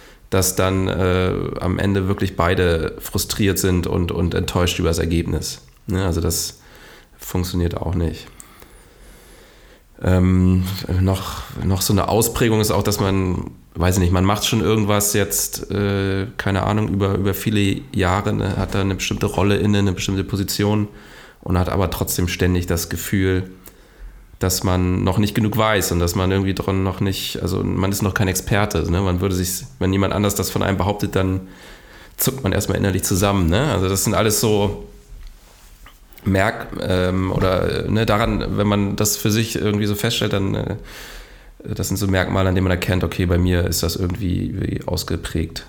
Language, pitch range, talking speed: German, 90-100 Hz, 180 wpm